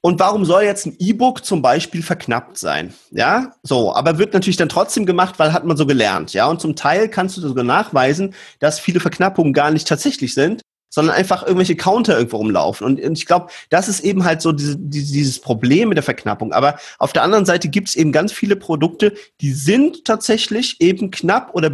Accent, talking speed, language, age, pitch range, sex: German, 205 wpm, German, 40-59, 145-190 Hz, male